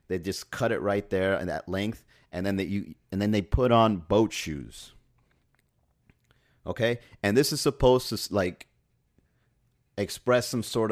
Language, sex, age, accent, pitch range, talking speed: English, male, 30-49, American, 90-115 Hz, 165 wpm